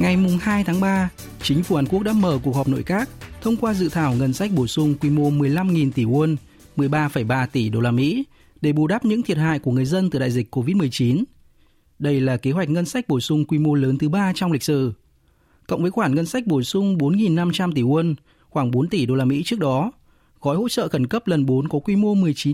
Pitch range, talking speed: 130-175 Hz, 235 wpm